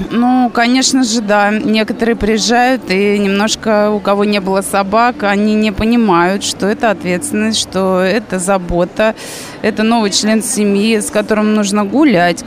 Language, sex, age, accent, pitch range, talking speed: Russian, female, 20-39, native, 190-230 Hz, 145 wpm